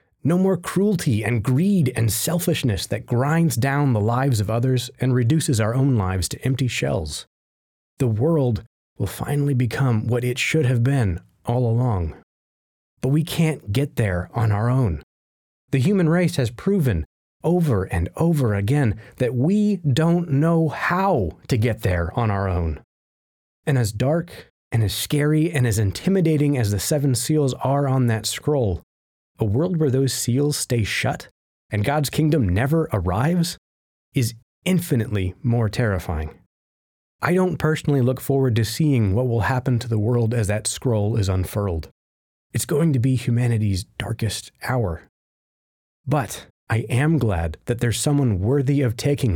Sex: male